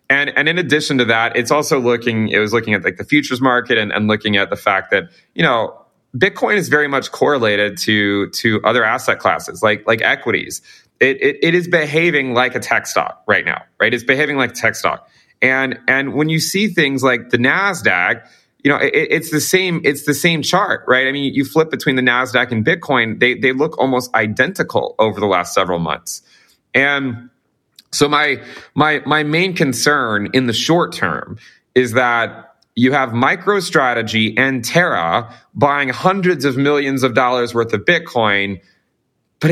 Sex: male